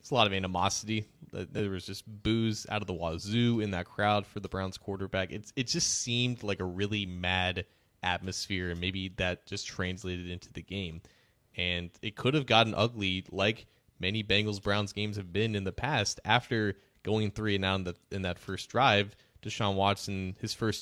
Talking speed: 195 wpm